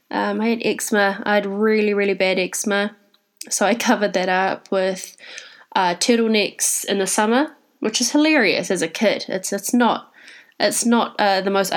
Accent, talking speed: Australian, 180 wpm